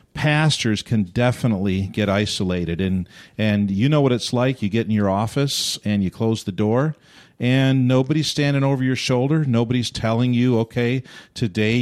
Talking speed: 170 wpm